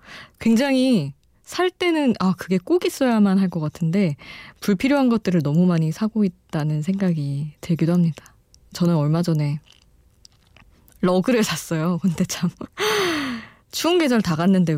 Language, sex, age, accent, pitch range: Korean, female, 20-39, native, 155-205 Hz